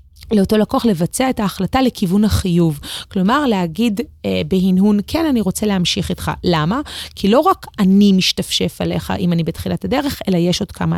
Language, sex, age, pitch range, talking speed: Hebrew, female, 30-49, 175-230 Hz, 170 wpm